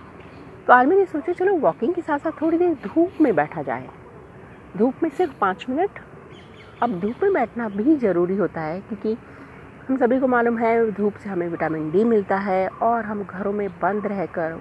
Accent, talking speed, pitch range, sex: native, 195 wpm, 170-255 Hz, female